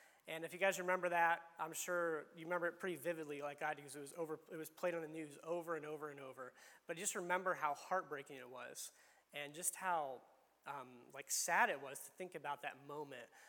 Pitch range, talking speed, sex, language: 155-185 Hz, 230 wpm, male, English